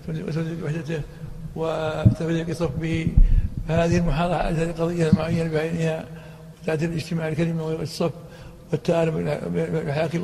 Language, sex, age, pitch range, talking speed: Arabic, male, 60-79, 160-175 Hz, 95 wpm